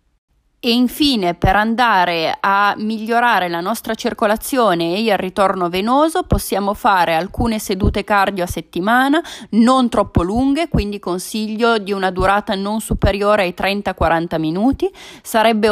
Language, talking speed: Italian, 130 wpm